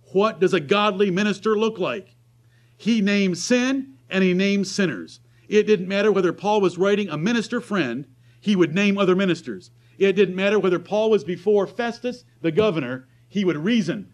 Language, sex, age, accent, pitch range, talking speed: English, male, 50-69, American, 150-225 Hz, 180 wpm